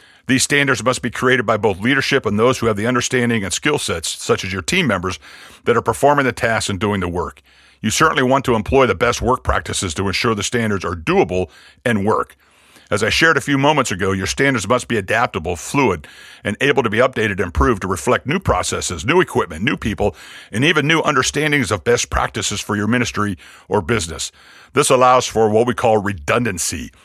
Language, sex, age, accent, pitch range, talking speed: English, male, 50-69, American, 105-130 Hz, 210 wpm